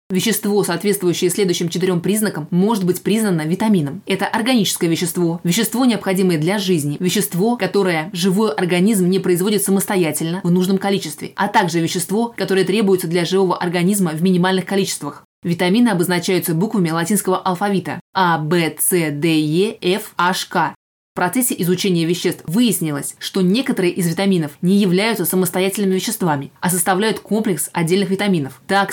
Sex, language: female, Russian